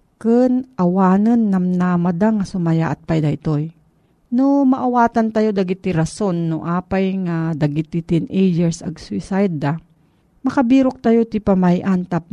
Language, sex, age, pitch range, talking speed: Filipino, female, 50-69, 165-210 Hz, 120 wpm